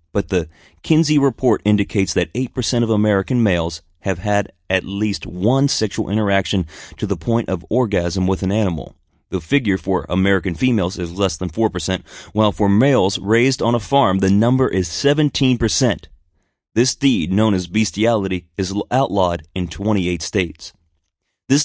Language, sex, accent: English, male, American